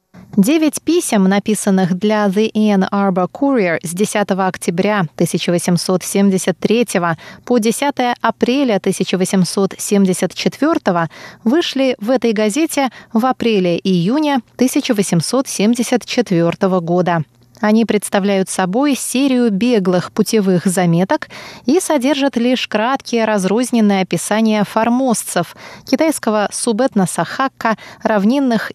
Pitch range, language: 190-250 Hz, Russian